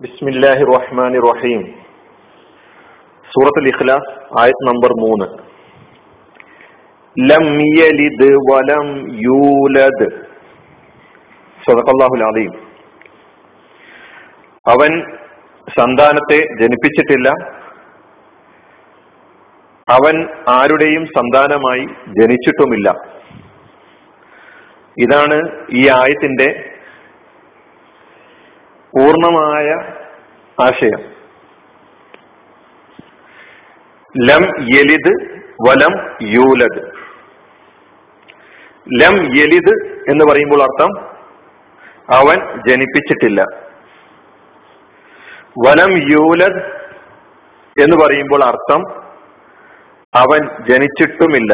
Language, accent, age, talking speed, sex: Malayalam, native, 50-69, 60 wpm, male